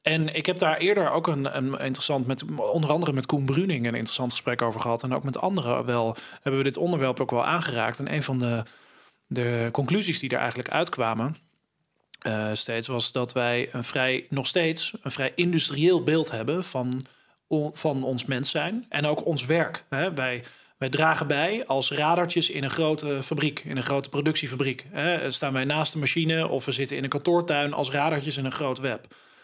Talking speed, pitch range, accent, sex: 200 wpm, 130-160 Hz, Dutch, male